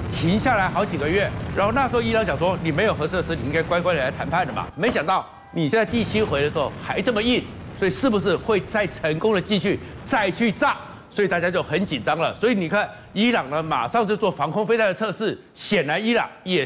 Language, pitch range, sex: Chinese, 165-225 Hz, male